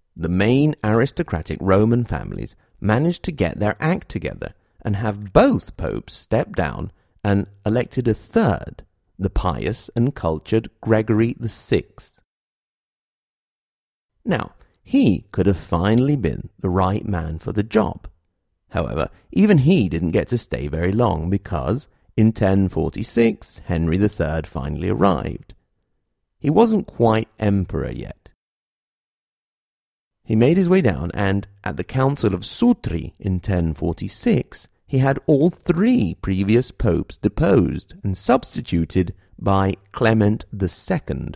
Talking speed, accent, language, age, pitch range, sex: 125 wpm, British, English, 40-59, 90-115 Hz, male